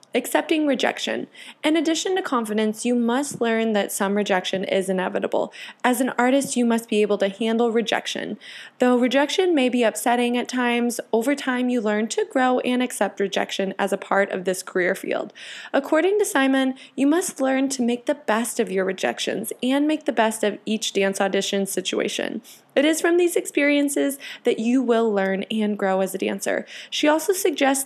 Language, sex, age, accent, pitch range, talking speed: English, female, 20-39, American, 205-270 Hz, 185 wpm